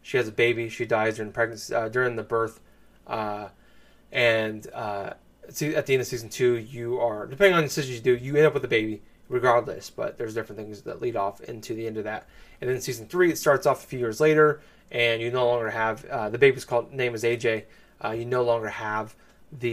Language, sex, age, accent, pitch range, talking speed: English, male, 20-39, American, 115-140 Hz, 235 wpm